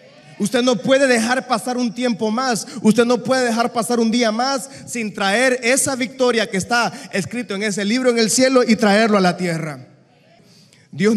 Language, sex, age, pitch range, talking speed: Spanish, male, 30-49, 155-210 Hz, 190 wpm